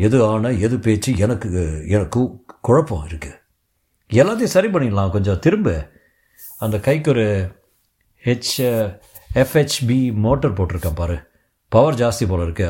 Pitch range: 100-155 Hz